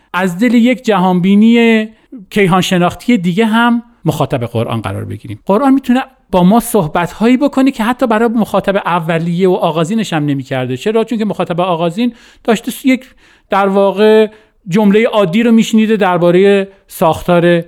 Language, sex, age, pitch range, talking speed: Persian, male, 40-59, 145-220 Hz, 145 wpm